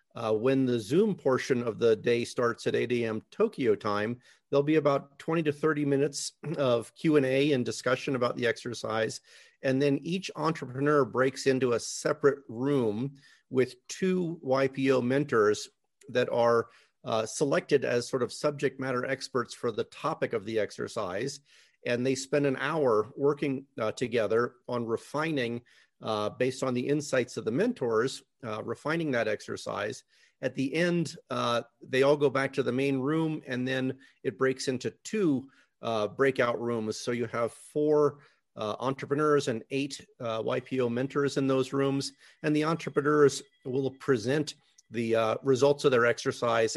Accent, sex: American, male